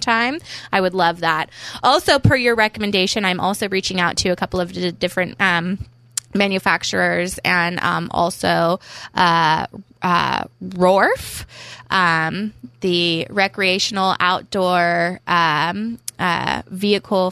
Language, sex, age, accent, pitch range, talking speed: English, female, 20-39, American, 170-195 Hz, 110 wpm